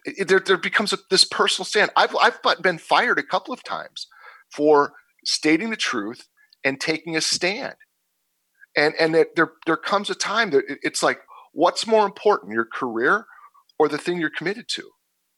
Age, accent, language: 40-59, American, English